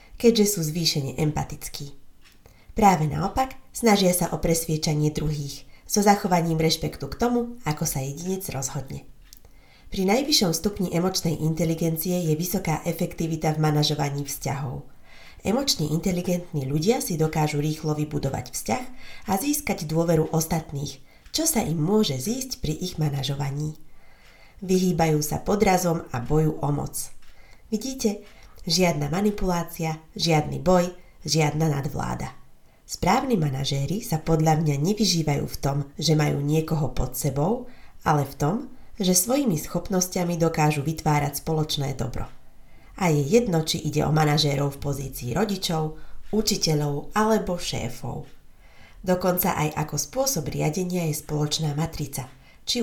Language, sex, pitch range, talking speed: Slovak, female, 145-185 Hz, 125 wpm